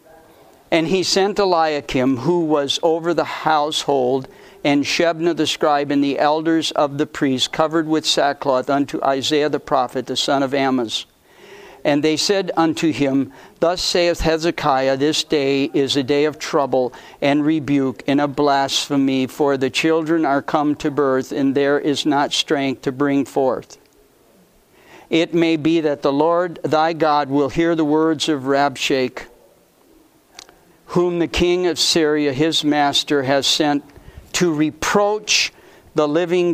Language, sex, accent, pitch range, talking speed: English, male, American, 140-170 Hz, 150 wpm